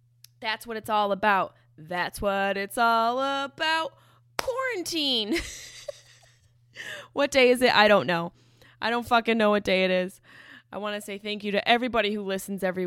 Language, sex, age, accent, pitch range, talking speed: English, female, 20-39, American, 170-230 Hz, 175 wpm